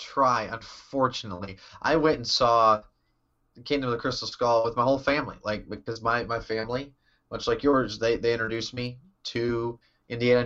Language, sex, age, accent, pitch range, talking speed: English, male, 30-49, American, 110-130 Hz, 170 wpm